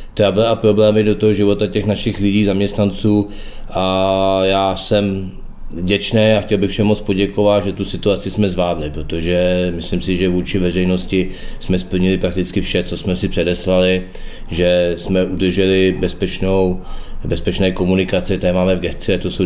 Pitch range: 90-100 Hz